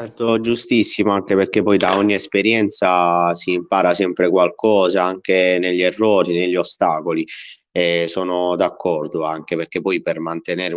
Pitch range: 90-115 Hz